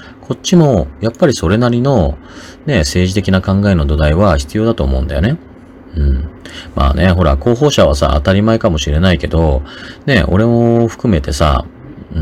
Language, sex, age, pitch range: Japanese, male, 40-59, 80-120 Hz